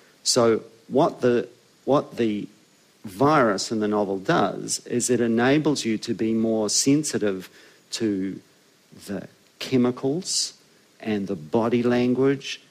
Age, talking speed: 50-69, 120 wpm